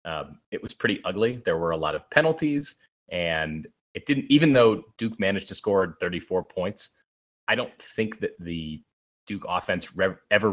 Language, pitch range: English, 80-110 Hz